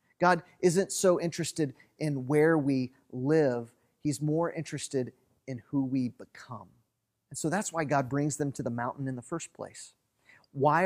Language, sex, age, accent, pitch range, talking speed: English, male, 40-59, American, 135-175 Hz, 165 wpm